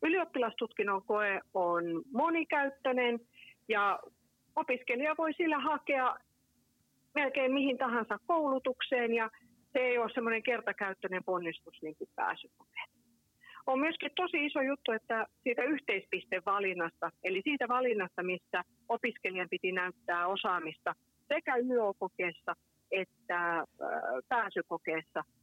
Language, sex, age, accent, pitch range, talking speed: Finnish, female, 40-59, native, 185-270 Hz, 100 wpm